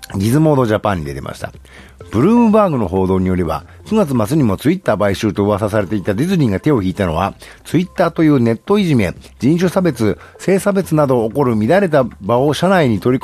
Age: 50-69